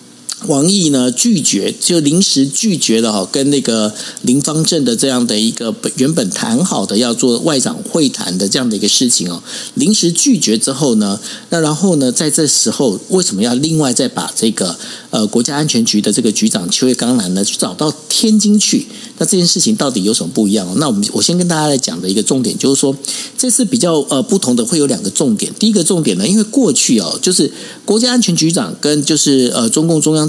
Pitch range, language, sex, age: 135-225 Hz, Chinese, male, 50-69